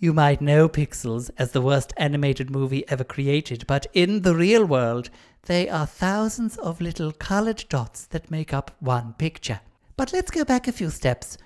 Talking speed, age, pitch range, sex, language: 185 wpm, 60-79, 135-190 Hz, male, English